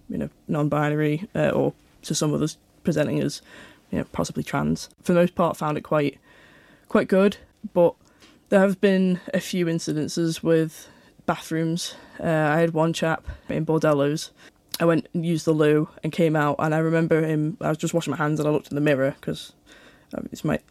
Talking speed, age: 195 wpm, 10-29